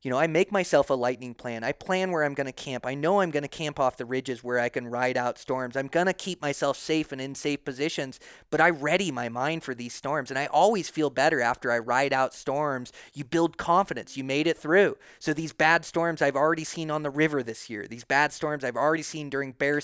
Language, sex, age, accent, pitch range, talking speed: English, male, 30-49, American, 130-165 Hz, 255 wpm